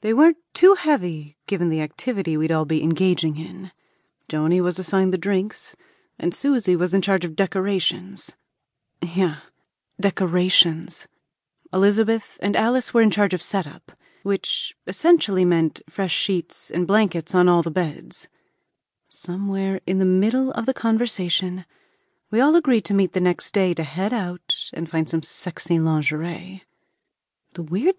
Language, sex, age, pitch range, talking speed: English, female, 30-49, 175-230 Hz, 150 wpm